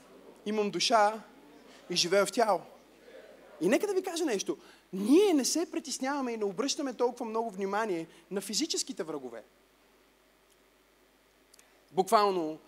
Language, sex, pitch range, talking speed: Bulgarian, male, 195-280 Hz, 125 wpm